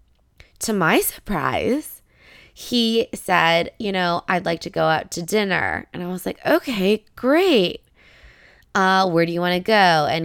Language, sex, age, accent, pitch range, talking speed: English, female, 20-39, American, 160-215 Hz, 165 wpm